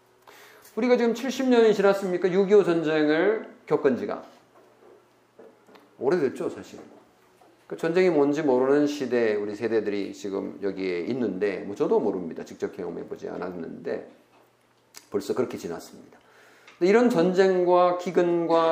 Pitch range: 130-205 Hz